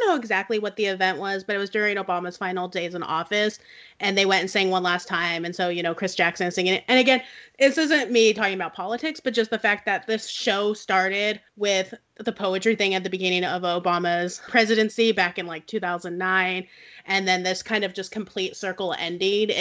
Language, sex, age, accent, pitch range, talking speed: English, female, 30-49, American, 185-230 Hz, 215 wpm